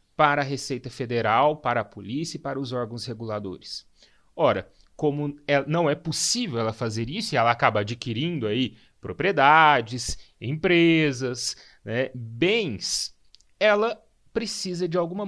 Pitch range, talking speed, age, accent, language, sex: 115-170 Hz, 125 wpm, 30-49, Brazilian, Portuguese, male